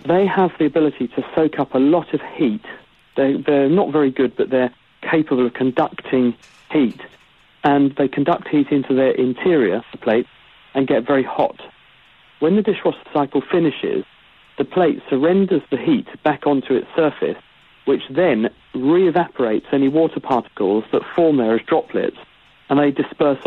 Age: 50-69